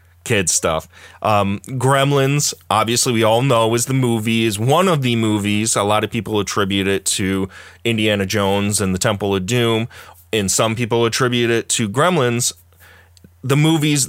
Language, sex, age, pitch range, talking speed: English, male, 30-49, 95-125 Hz, 165 wpm